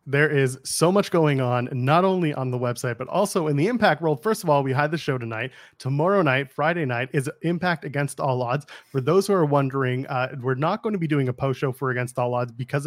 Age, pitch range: 30-49, 130-155 Hz